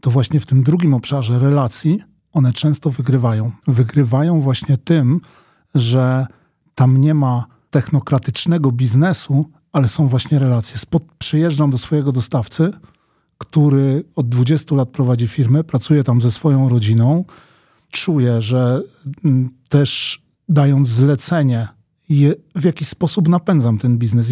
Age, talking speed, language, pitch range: 40-59, 120 wpm, Polish, 125-150 Hz